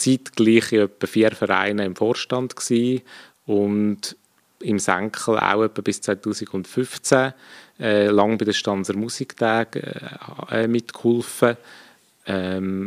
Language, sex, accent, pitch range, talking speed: German, male, Austrian, 100-125 Hz, 105 wpm